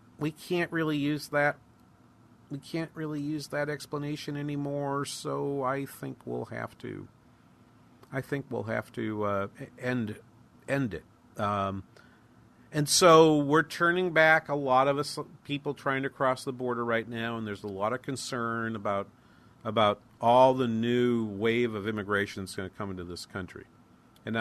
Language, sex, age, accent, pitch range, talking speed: English, male, 50-69, American, 110-145 Hz, 165 wpm